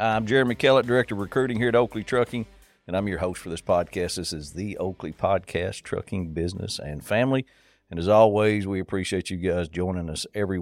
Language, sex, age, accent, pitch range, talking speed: English, male, 50-69, American, 85-110 Hz, 205 wpm